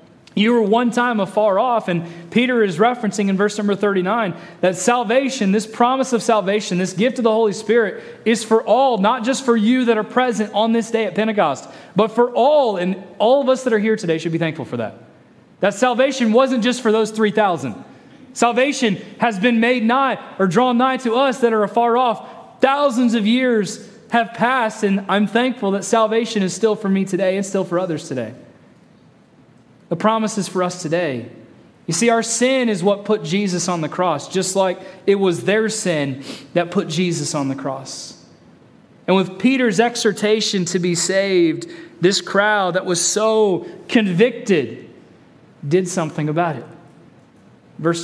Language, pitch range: English, 175-230 Hz